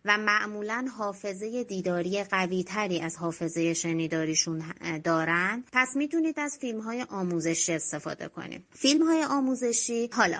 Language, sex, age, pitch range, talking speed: Persian, female, 30-49, 170-240 Hz, 120 wpm